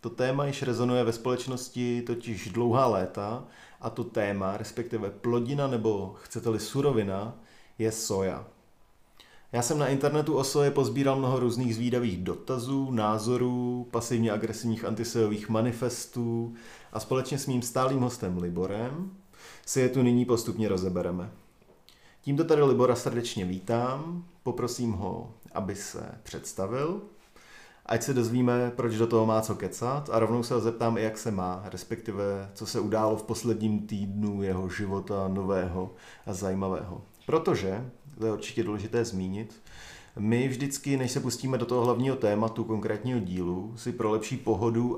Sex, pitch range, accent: male, 100-125 Hz, native